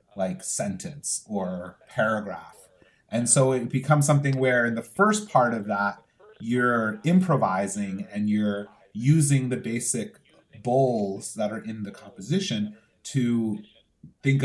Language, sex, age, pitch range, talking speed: English, male, 30-49, 105-135 Hz, 130 wpm